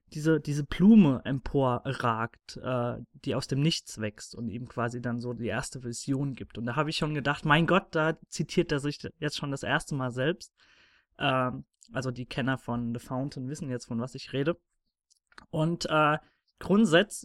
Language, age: German, 20-39